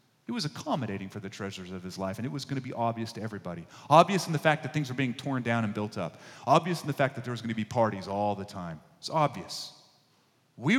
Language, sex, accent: English, male, American